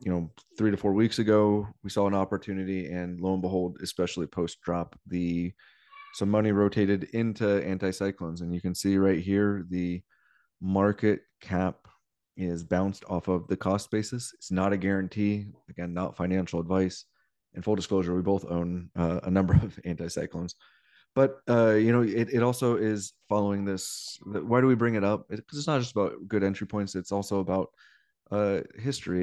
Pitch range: 90-105 Hz